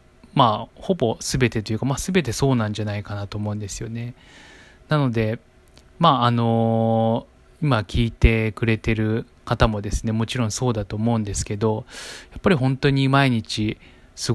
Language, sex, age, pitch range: Japanese, male, 20-39, 105-125 Hz